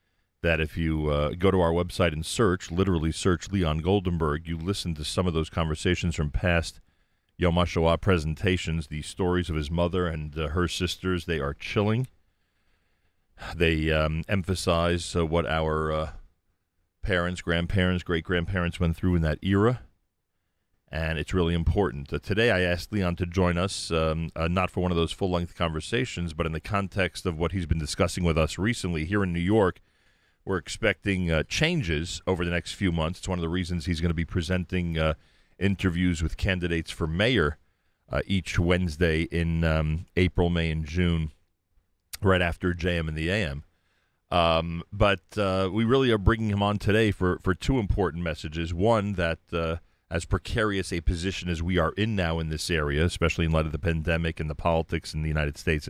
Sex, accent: male, American